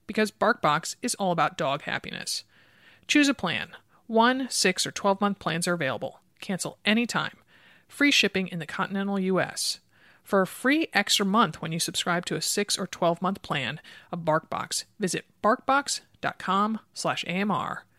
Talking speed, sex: 155 wpm, male